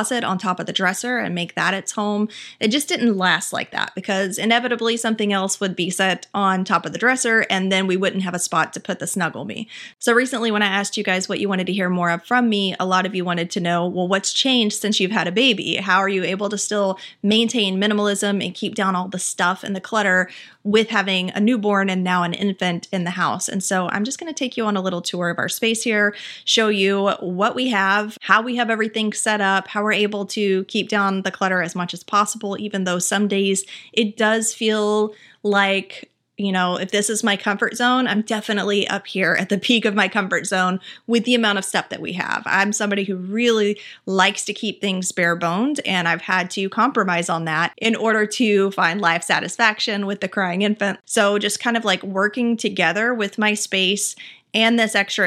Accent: American